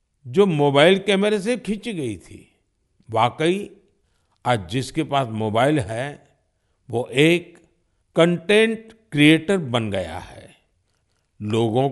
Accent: native